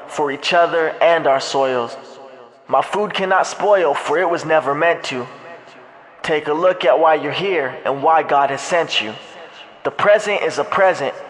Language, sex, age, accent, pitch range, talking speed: English, male, 20-39, American, 145-180 Hz, 180 wpm